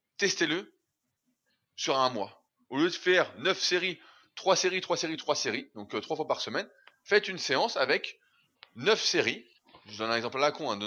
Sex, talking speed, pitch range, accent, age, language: male, 205 wpm, 120-175 Hz, French, 20-39, French